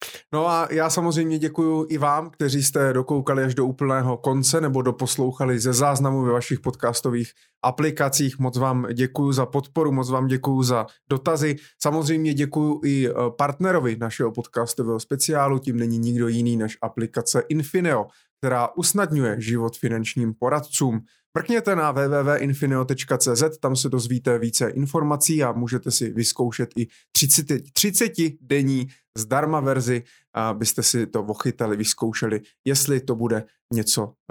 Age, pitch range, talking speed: 20-39, 120-145 Hz, 135 wpm